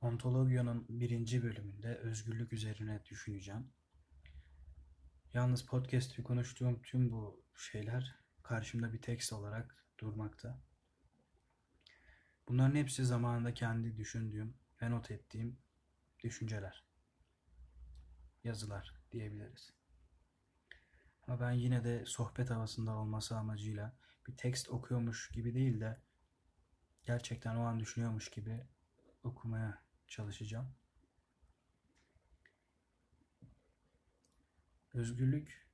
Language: Turkish